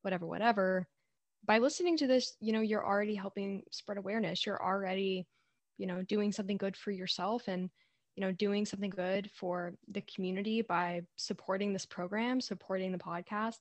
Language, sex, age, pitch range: English, female, 10-29, 180-215 Hz